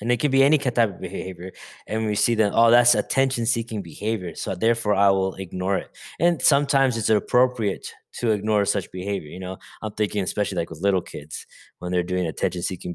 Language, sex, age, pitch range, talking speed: English, male, 20-39, 95-115 Hz, 200 wpm